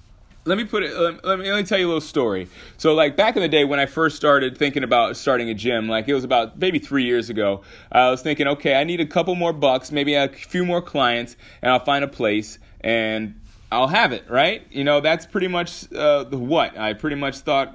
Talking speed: 245 wpm